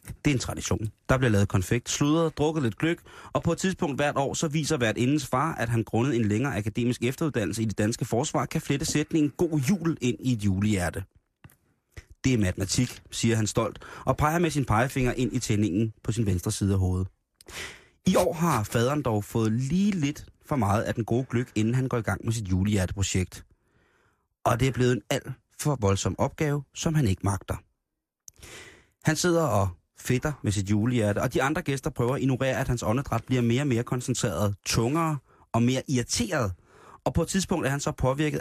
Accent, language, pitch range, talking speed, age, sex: native, Danish, 105-145 Hz, 205 wpm, 30-49, male